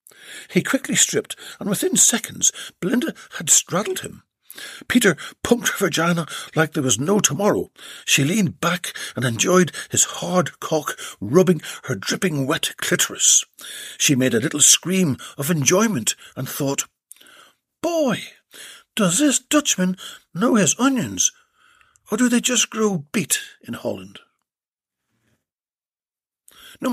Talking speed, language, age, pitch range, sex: 125 wpm, English, 60-79, 155-255 Hz, male